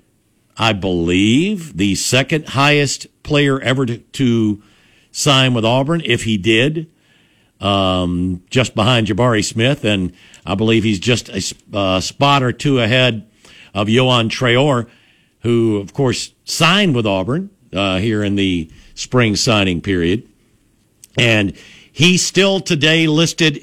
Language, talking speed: English, 130 wpm